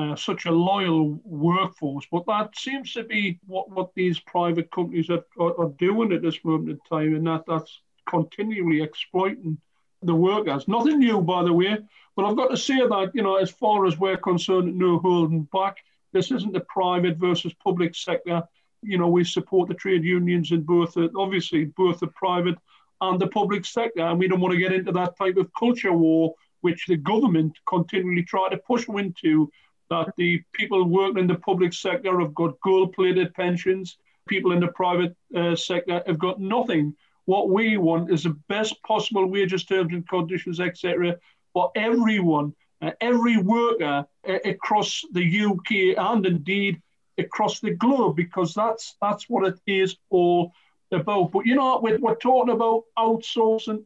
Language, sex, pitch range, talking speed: English, male, 170-205 Hz, 180 wpm